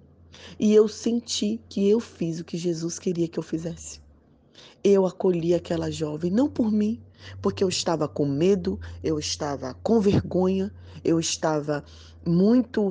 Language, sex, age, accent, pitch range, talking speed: Portuguese, female, 20-39, Brazilian, 155-190 Hz, 150 wpm